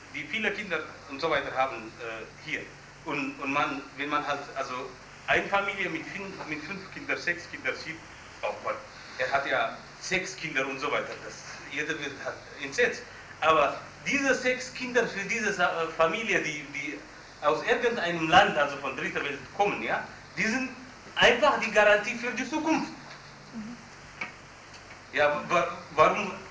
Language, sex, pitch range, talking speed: German, male, 150-205 Hz, 155 wpm